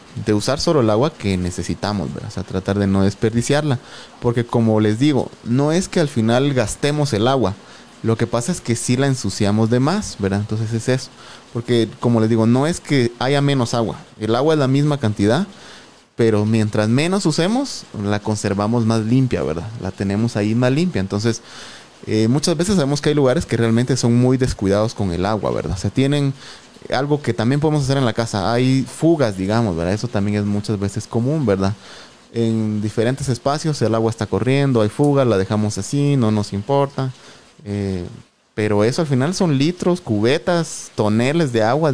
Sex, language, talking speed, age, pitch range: male, Spanish, 195 wpm, 30-49, 105-135 Hz